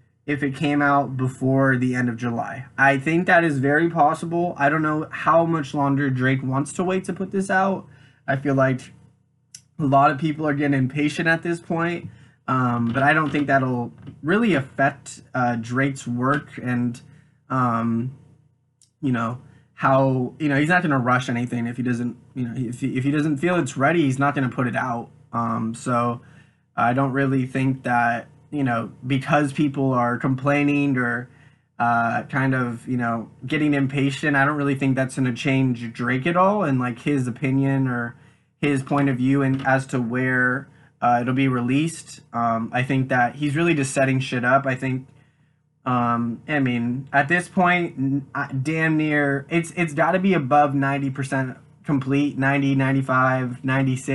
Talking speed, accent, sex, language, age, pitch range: 180 wpm, American, male, English, 20-39, 130-145 Hz